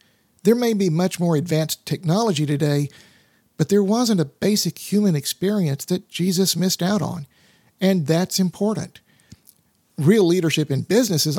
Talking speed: 150 wpm